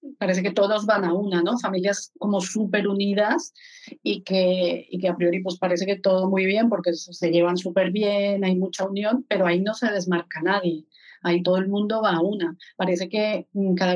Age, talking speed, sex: 40-59, 200 wpm, female